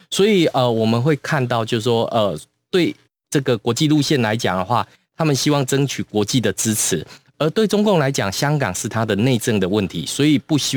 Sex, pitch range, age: male, 105-150 Hz, 20-39